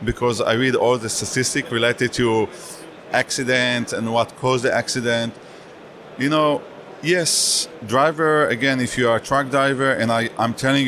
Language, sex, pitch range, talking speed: English, male, 115-140 Hz, 155 wpm